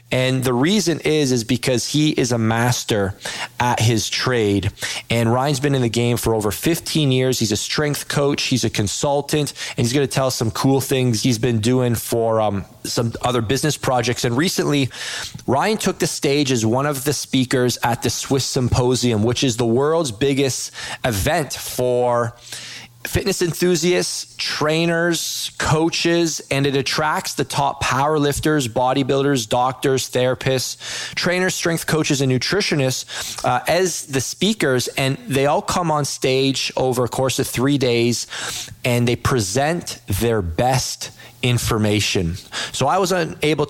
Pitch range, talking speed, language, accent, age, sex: 120-145 Hz, 160 wpm, English, American, 20-39, male